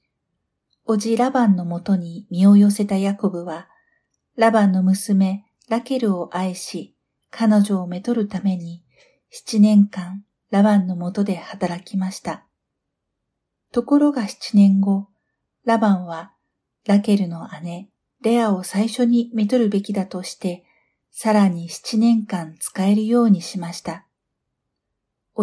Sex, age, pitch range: female, 50-69, 185-220 Hz